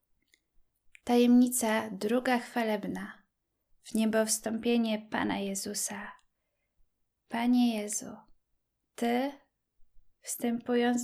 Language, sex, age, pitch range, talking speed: Polish, female, 10-29, 205-240 Hz, 65 wpm